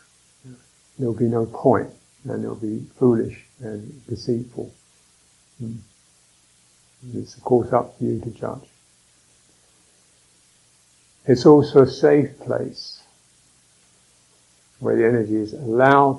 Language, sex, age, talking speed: English, male, 60-79, 110 wpm